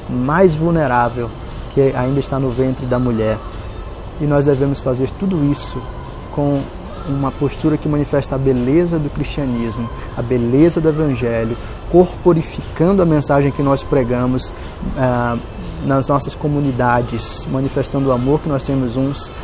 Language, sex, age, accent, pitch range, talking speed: Portuguese, male, 20-39, Brazilian, 120-140 Hz, 140 wpm